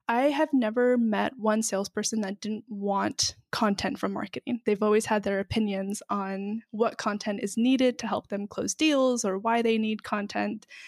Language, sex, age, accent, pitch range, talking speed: English, female, 20-39, American, 210-250 Hz, 175 wpm